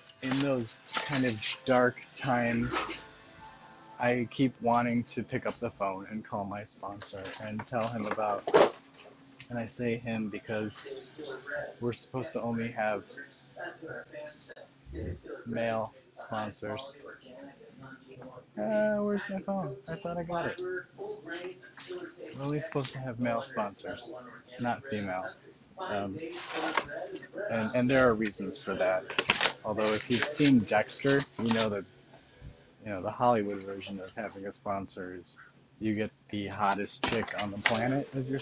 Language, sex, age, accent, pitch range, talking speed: English, male, 30-49, American, 110-135 Hz, 135 wpm